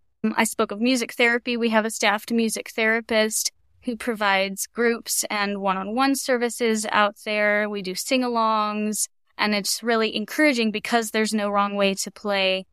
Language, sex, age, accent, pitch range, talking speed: English, female, 10-29, American, 200-225 Hz, 155 wpm